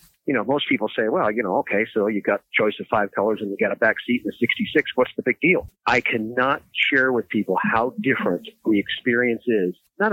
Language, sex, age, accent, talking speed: English, male, 50-69, American, 245 wpm